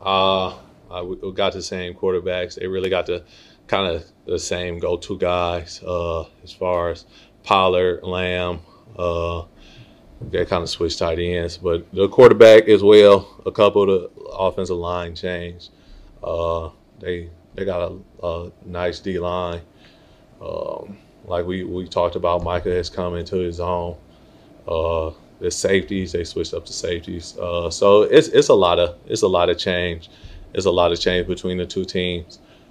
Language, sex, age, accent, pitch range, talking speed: English, male, 30-49, American, 85-95 Hz, 165 wpm